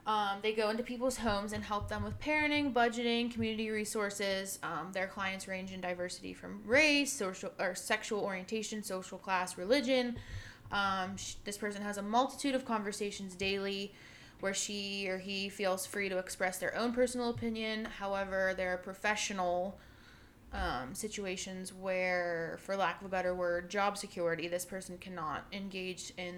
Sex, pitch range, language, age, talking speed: female, 180-210 Hz, English, 20-39, 160 wpm